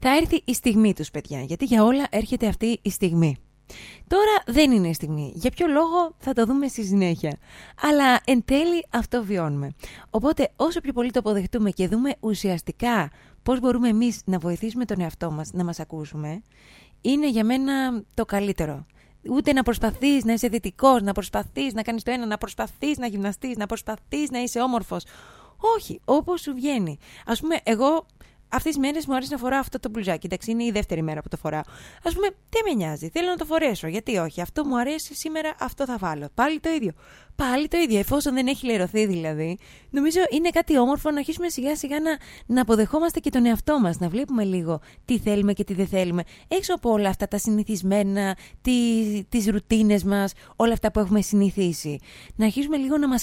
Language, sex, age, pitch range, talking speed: Greek, female, 20-39, 190-275 Hz, 195 wpm